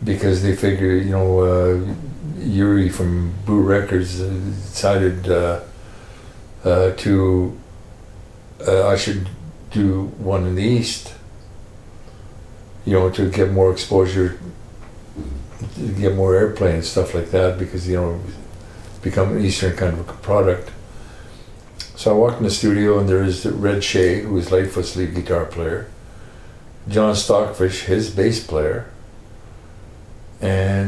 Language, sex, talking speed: English, male, 135 wpm